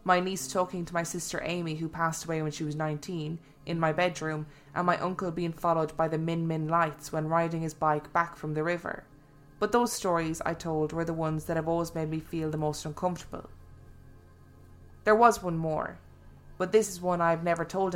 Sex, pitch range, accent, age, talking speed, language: female, 150-175 Hz, Irish, 20-39, 215 wpm, English